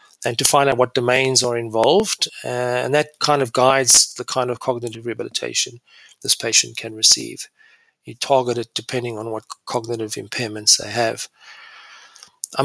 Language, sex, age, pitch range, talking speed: English, male, 40-59, 120-140 Hz, 160 wpm